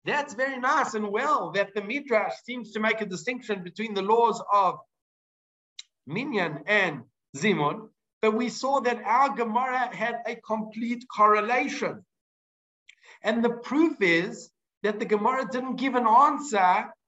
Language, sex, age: English, male, 50-69